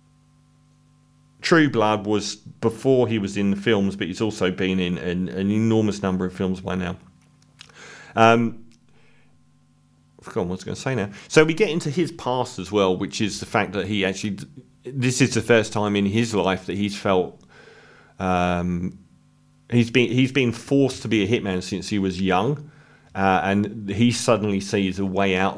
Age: 40-59